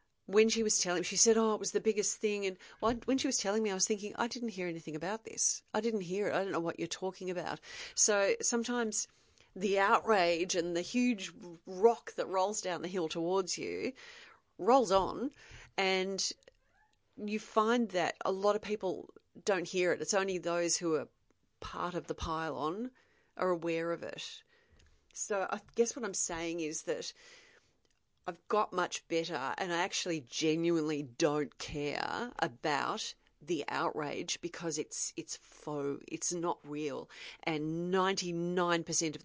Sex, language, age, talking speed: female, English, 40-59, 170 wpm